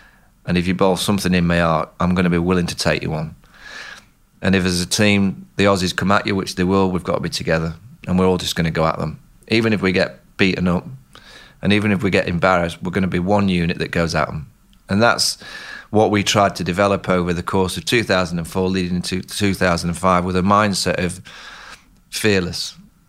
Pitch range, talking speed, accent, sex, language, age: 90-105 Hz, 225 wpm, British, male, English, 30-49